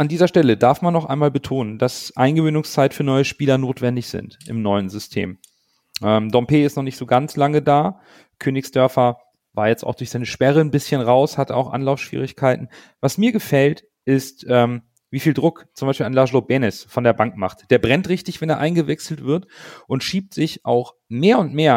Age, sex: 40-59, male